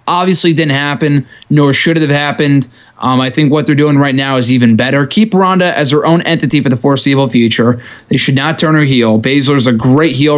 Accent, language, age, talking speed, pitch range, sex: American, English, 20-39, 225 wpm, 125-155 Hz, male